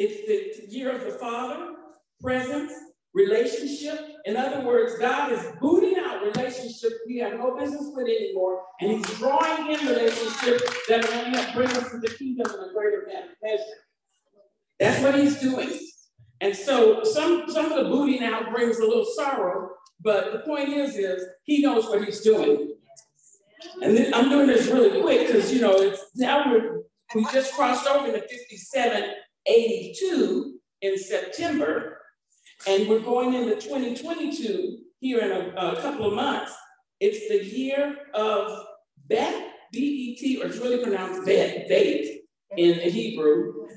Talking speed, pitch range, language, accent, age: 160 wpm, 210-295 Hz, English, American, 50-69